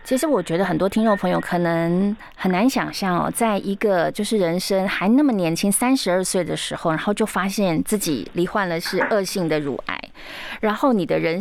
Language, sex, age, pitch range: Chinese, female, 20-39, 180-250 Hz